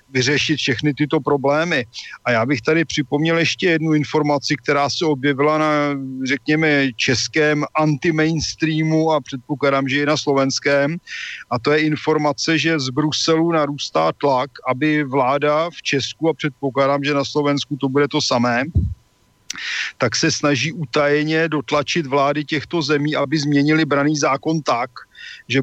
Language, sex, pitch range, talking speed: Slovak, male, 140-155 Hz, 145 wpm